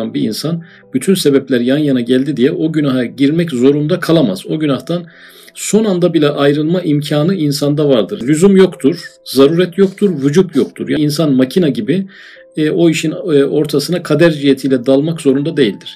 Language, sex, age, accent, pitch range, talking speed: Turkish, male, 40-59, native, 140-175 Hz, 155 wpm